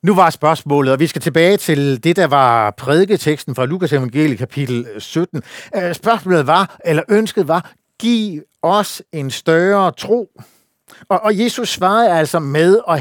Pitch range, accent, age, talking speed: 145-195 Hz, native, 60-79, 150 wpm